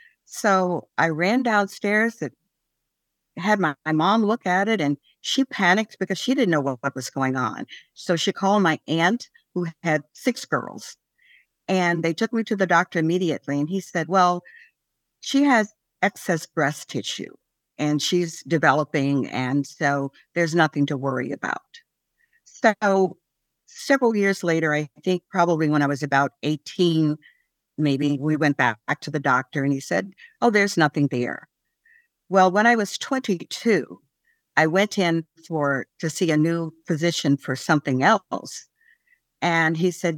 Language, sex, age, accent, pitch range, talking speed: English, female, 60-79, American, 155-225 Hz, 160 wpm